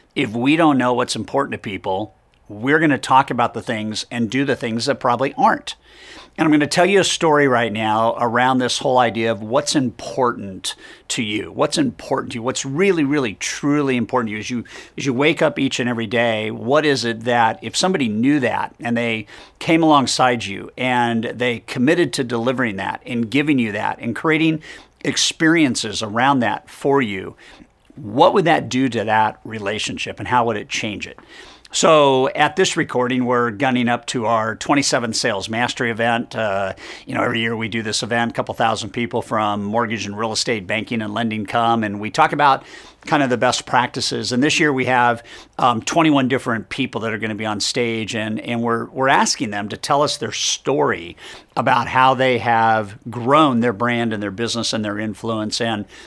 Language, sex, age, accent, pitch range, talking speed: English, male, 50-69, American, 115-135 Hz, 200 wpm